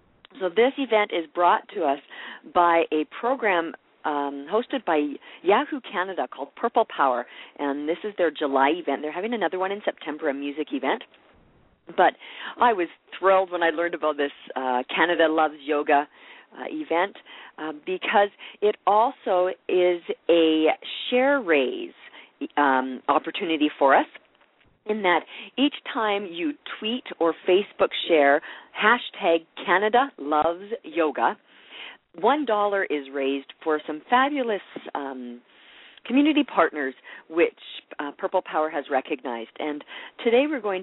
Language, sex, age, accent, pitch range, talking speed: English, female, 40-59, American, 150-220 Hz, 130 wpm